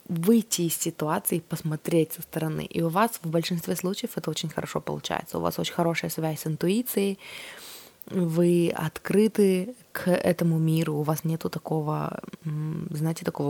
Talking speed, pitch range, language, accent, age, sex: 155 wpm, 160-185 Hz, Russian, native, 20-39, female